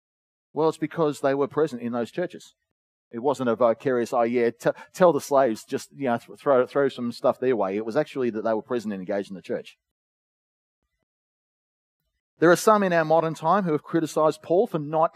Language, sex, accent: English, male, Australian